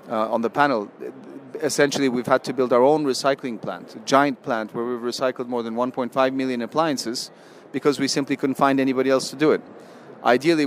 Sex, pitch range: male, 120-140 Hz